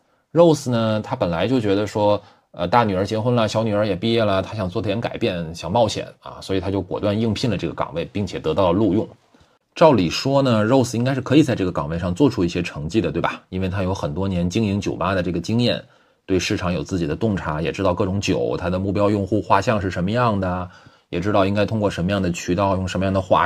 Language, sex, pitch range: Chinese, male, 90-125 Hz